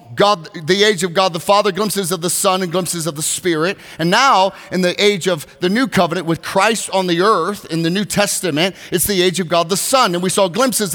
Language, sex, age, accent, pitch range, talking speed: English, male, 40-59, American, 175-215 Hz, 245 wpm